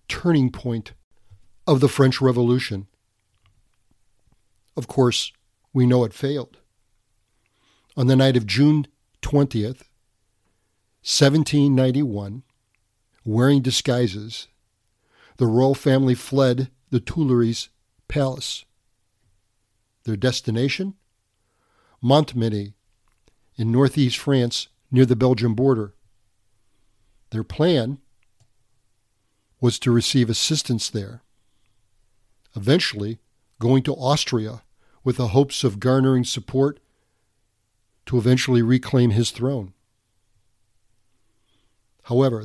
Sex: male